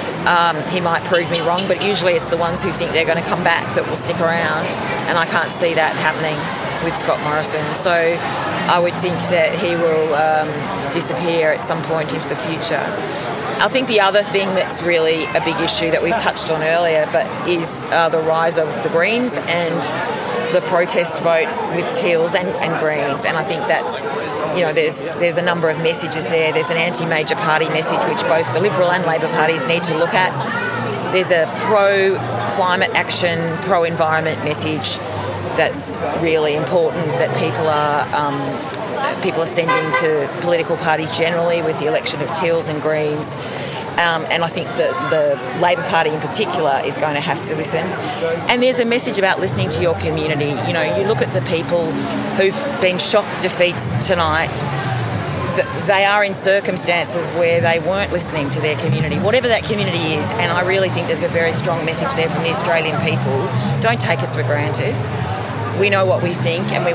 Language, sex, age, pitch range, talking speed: English, female, 30-49, 155-175 Hz, 190 wpm